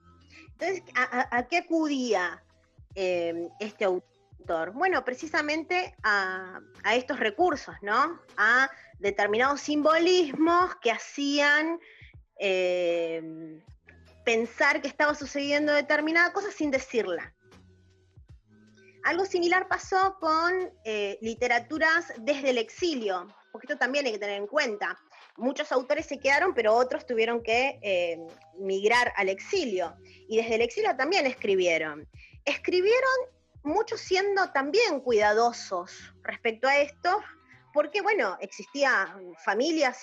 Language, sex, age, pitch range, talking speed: Spanish, female, 20-39, 185-300 Hz, 115 wpm